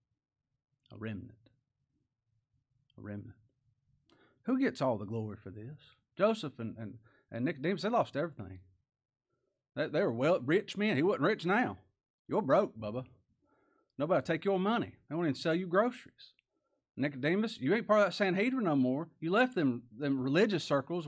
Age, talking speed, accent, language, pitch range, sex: 40-59, 160 wpm, American, English, 110-165 Hz, male